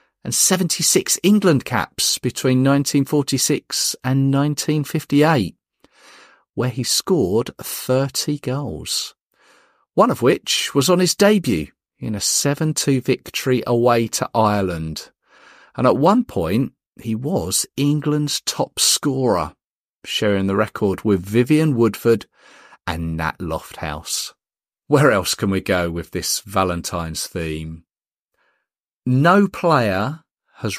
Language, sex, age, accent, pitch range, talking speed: English, male, 40-59, British, 95-140 Hz, 110 wpm